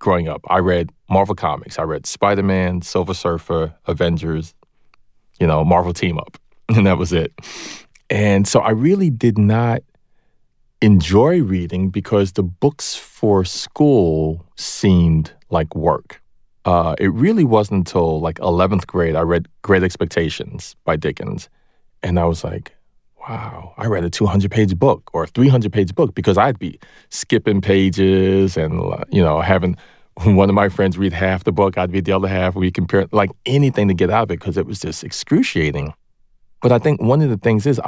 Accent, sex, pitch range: American, male, 85-100 Hz